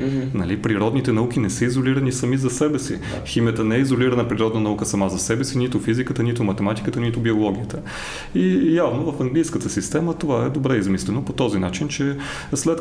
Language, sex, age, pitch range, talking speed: Bulgarian, male, 30-49, 105-140 Hz, 185 wpm